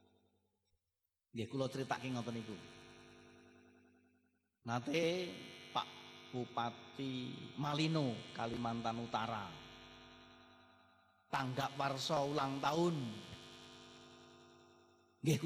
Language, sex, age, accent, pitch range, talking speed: Indonesian, male, 50-69, native, 85-140 Hz, 60 wpm